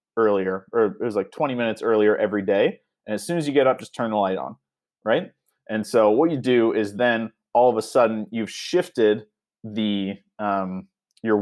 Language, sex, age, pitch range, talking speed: English, male, 30-49, 100-120 Hz, 205 wpm